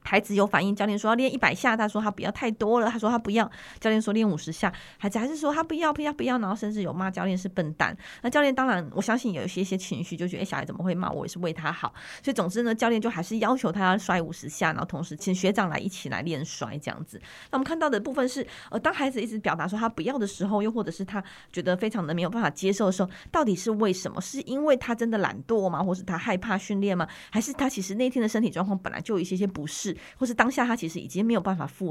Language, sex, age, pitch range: Chinese, female, 20-39, 180-230 Hz